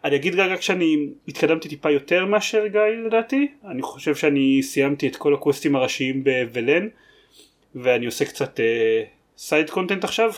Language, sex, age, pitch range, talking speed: Hebrew, male, 30-49, 145-215 Hz, 155 wpm